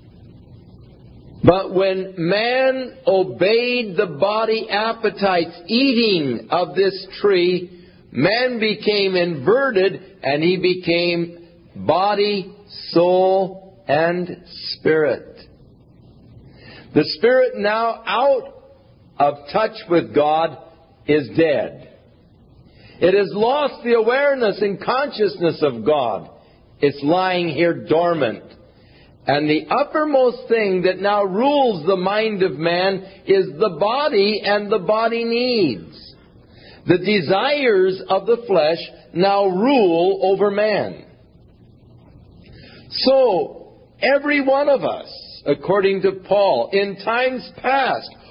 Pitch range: 175-235 Hz